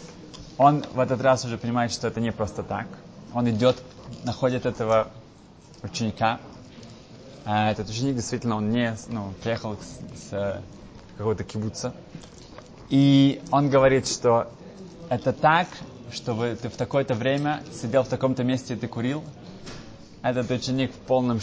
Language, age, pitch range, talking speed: Russian, 20-39, 115-145 Hz, 145 wpm